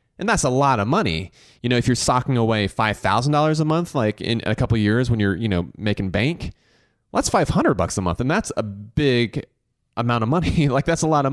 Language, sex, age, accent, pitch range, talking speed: English, male, 30-49, American, 105-130 Hz, 240 wpm